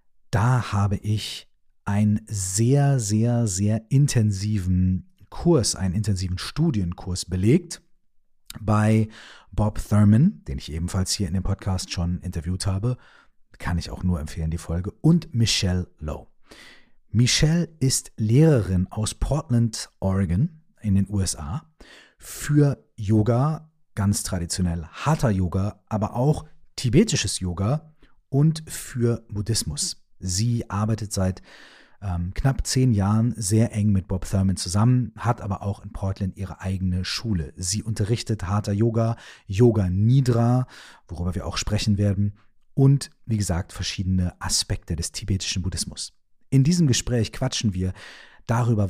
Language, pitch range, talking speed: German, 95-120 Hz, 125 wpm